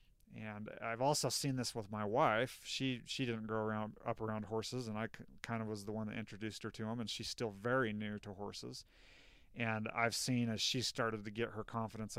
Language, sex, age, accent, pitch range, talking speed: English, male, 30-49, American, 105-115 Hz, 220 wpm